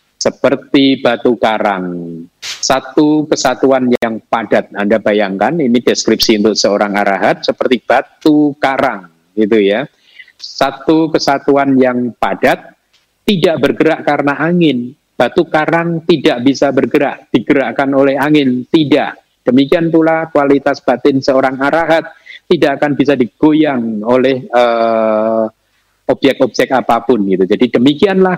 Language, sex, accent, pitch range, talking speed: Indonesian, male, native, 115-155 Hz, 110 wpm